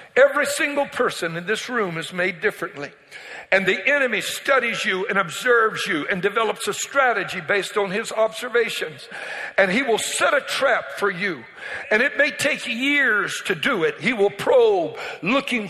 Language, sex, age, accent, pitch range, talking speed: English, male, 60-79, American, 215-285 Hz, 170 wpm